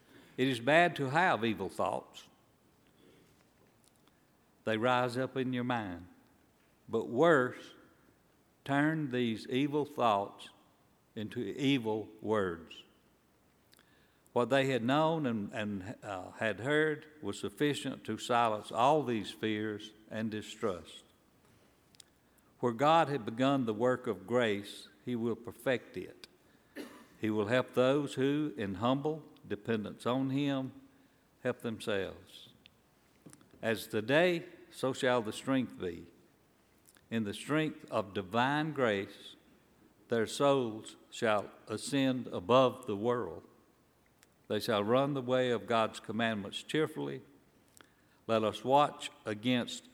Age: 60-79